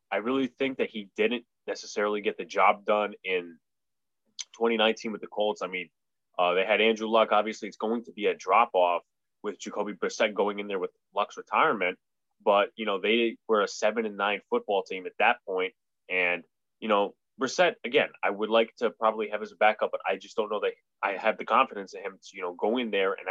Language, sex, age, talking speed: English, male, 20-39, 225 wpm